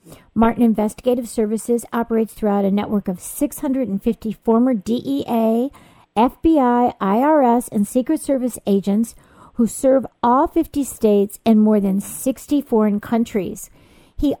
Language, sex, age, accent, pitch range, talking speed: English, female, 50-69, American, 200-255 Hz, 120 wpm